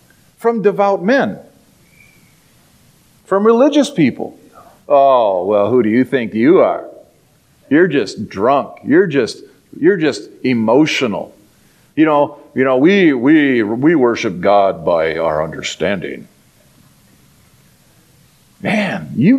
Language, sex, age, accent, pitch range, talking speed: English, male, 50-69, American, 175-235 Hz, 110 wpm